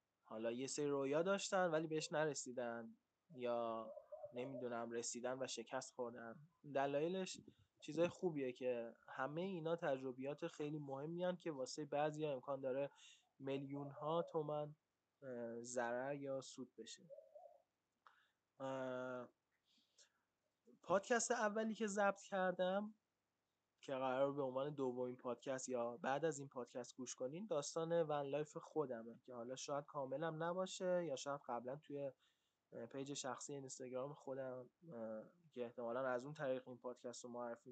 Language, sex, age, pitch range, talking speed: Persian, male, 20-39, 125-160 Hz, 125 wpm